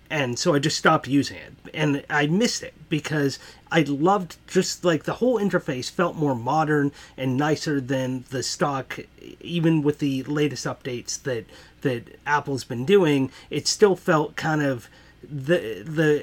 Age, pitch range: 30-49, 140-175 Hz